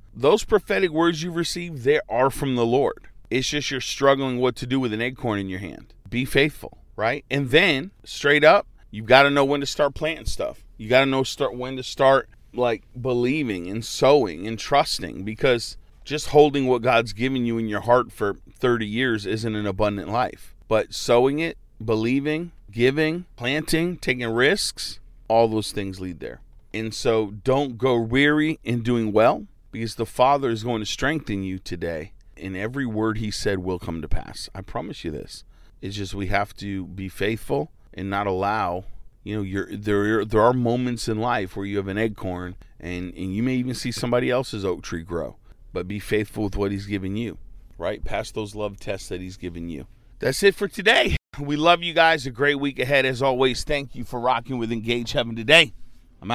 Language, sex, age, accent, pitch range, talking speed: English, male, 40-59, American, 105-135 Hz, 200 wpm